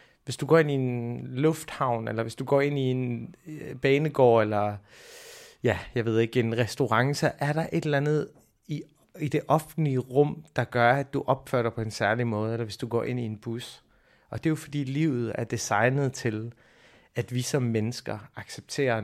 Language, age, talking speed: Danish, 30-49, 205 wpm